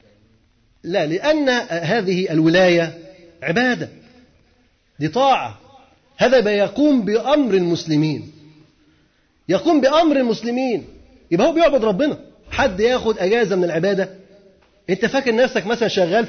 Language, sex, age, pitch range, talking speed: Arabic, male, 30-49, 190-255 Hz, 105 wpm